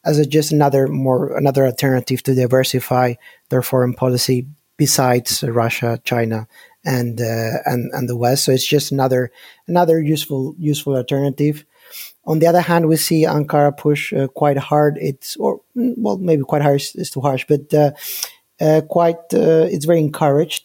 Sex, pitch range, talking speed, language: male, 130-150 Hz, 165 wpm, English